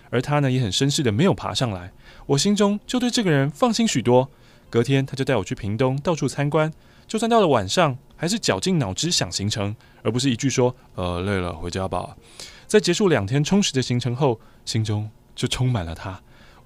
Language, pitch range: Chinese, 115-175 Hz